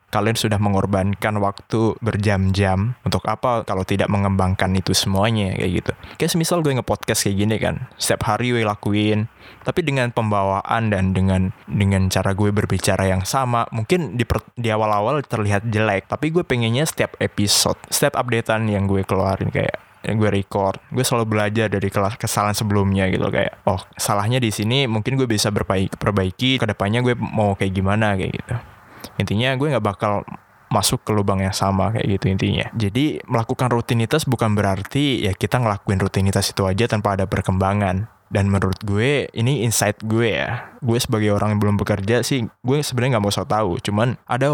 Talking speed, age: 175 wpm, 20-39